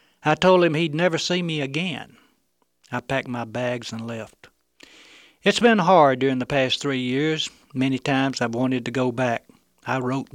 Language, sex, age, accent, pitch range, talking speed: English, male, 60-79, American, 120-155 Hz, 180 wpm